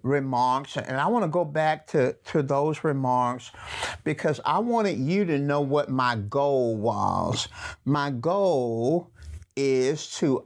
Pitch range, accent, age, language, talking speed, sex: 125-175 Hz, American, 50-69, English, 145 wpm, male